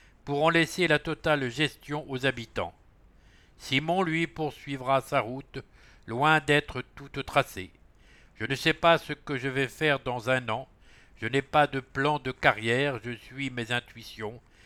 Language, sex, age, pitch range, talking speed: English, male, 60-79, 110-145 Hz, 165 wpm